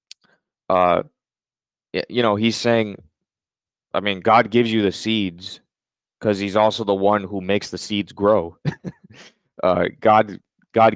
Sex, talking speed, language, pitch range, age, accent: male, 135 wpm, English, 95-110 Hz, 20-39, American